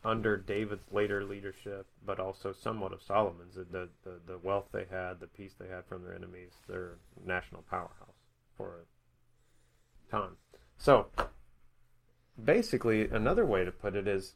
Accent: American